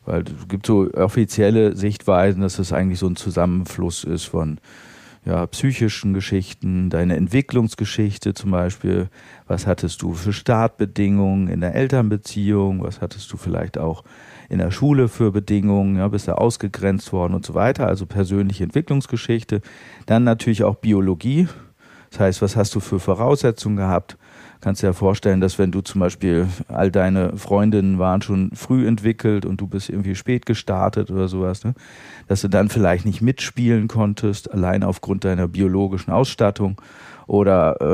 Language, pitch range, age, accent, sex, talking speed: German, 95-110 Hz, 40-59, German, male, 160 wpm